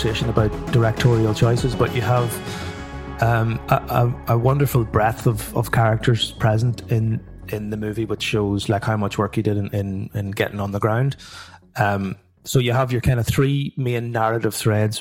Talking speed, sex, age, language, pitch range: 185 wpm, male, 30-49, English, 110-130 Hz